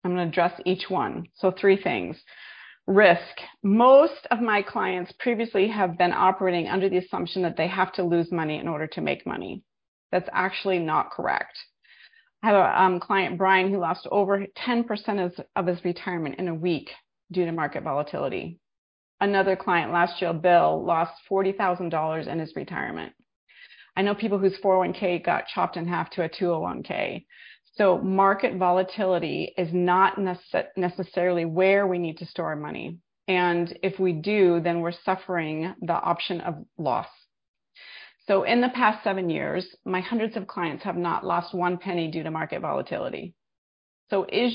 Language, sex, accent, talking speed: English, female, American, 165 wpm